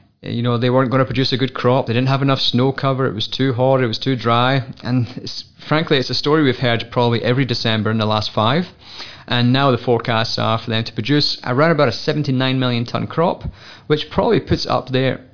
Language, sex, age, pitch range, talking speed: English, male, 30-49, 120-140 Hz, 230 wpm